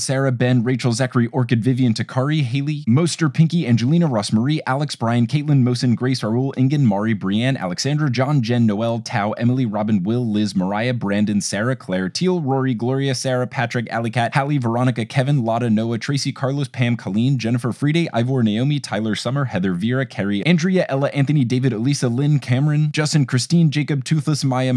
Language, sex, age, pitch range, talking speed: English, male, 20-39, 125-150 Hz, 170 wpm